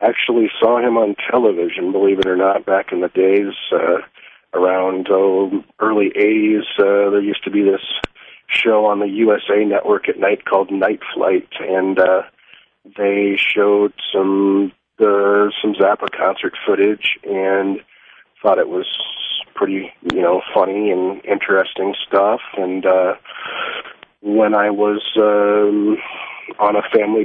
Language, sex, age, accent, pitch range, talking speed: English, male, 40-59, American, 95-105 Hz, 140 wpm